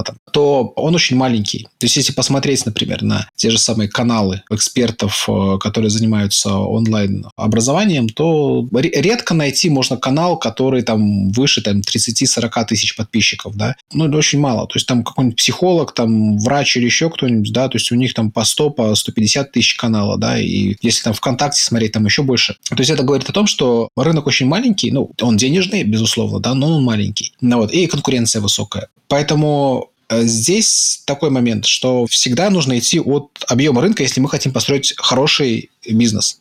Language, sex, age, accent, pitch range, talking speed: Russian, male, 20-39, native, 110-140 Hz, 175 wpm